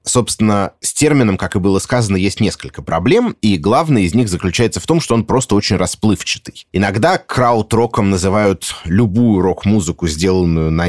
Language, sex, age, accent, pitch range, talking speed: Russian, male, 30-49, native, 90-125 Hz, 160 wpm